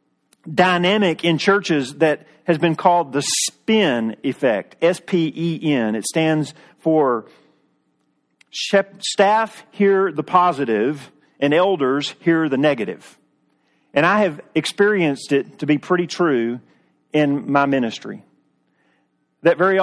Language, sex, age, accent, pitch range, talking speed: English, male, 40-59, American, 140-185 Hz, 110 wpm